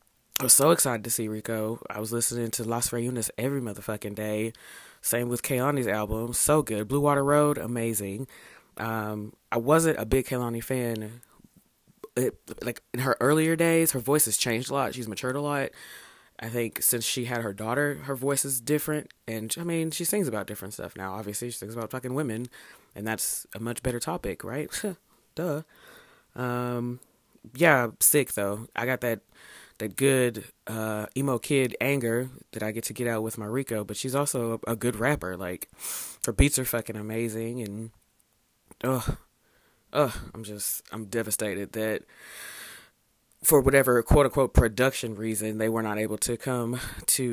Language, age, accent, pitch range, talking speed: English, 20-39, American, 110-135 Hz, 175 wpm